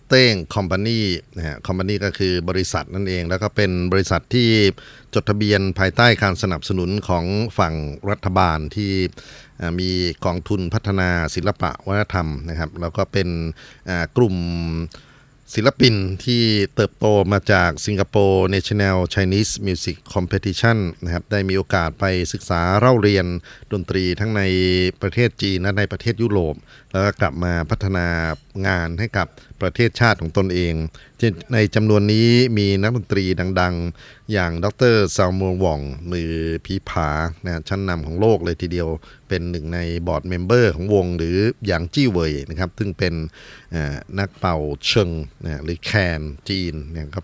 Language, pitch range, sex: Thai, 85-105 Hz, male